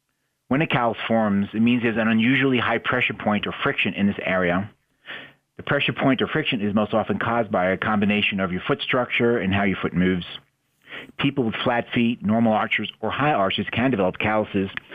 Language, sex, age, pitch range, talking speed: English, male, 40-59, 105-130 Hz, 200 wpm